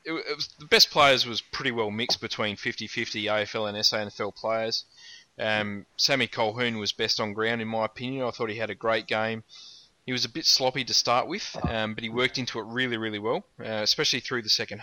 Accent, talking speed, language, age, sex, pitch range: Australian, 220 wpm, English, 20-39, male, 105-125 Hz